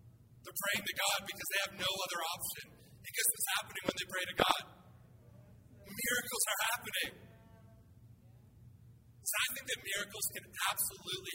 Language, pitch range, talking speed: English, 115-165 Hz, 155 wpm